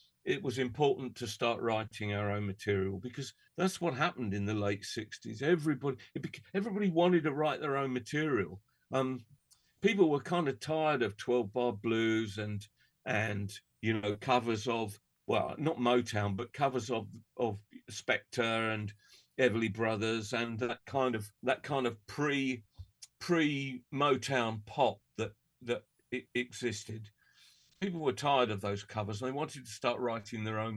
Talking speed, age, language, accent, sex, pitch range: 155 wpm, 50-69, English, British, male, 110-145 Hz